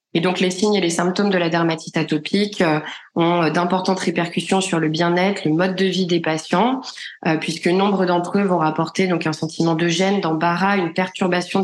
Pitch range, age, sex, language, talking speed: 170-195 Hz, 20-39, female, French, 190 wpm